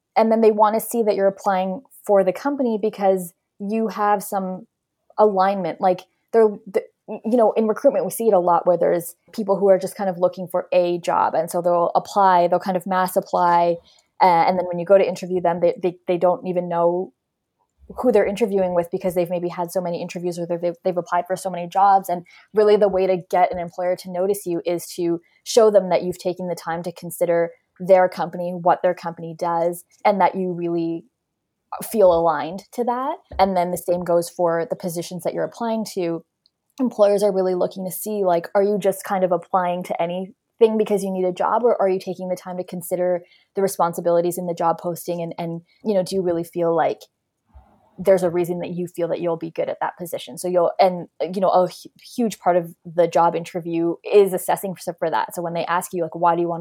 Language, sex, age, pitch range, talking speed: English, female, 20-39, 175-195 Hz, 225 wpm